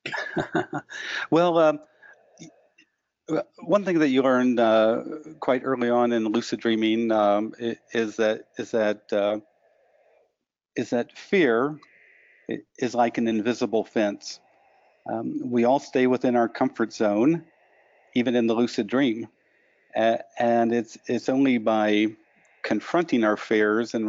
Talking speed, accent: 125 wpm, American